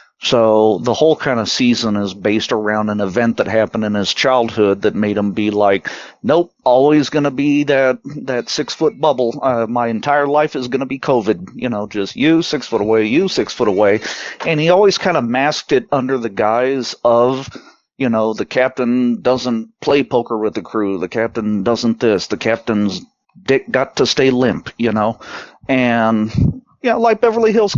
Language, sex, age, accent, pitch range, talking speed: English, male, 40-59, American, 105-140 Hz, 195 wpm